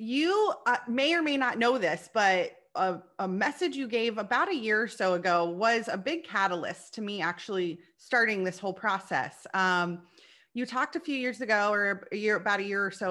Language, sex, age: English, female, 30-49